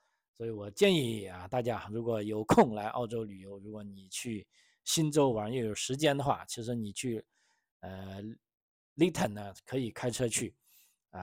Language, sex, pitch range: Chinese, male, 100-135 Hz